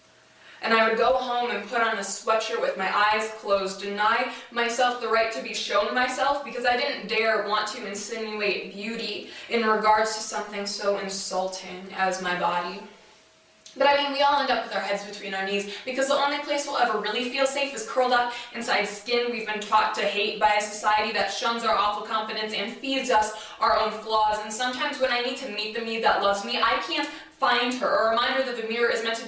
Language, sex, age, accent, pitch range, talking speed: English, female, 20-39, American, 215-260 Hz, 225 wpm